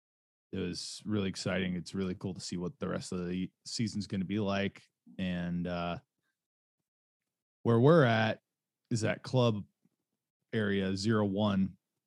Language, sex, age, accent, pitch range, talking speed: English, male, 20-39, American, 100-120 Hz, 150 wpm